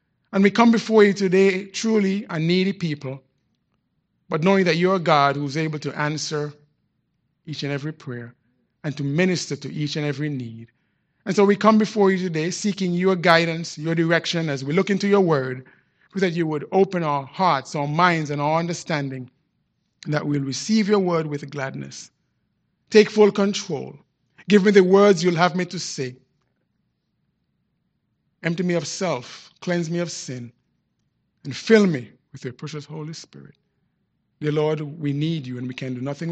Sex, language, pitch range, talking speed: male, English, 135-175 Hz, 180 wpm